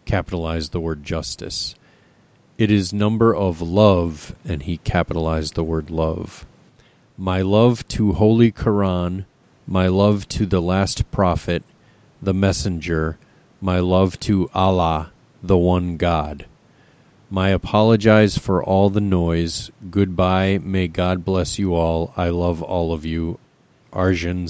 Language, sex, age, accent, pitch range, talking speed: English, male, 40-59, American, 90-105 Hz, 130 wpm